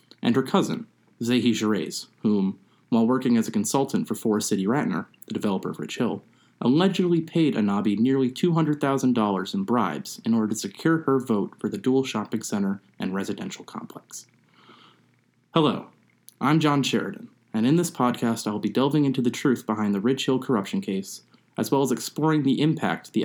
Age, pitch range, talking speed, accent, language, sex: 30-49, 105-150 Hz, 180 wpm, American, English, male